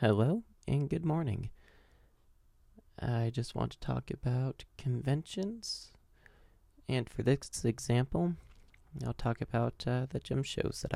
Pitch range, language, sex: 80-120 Hz, English, male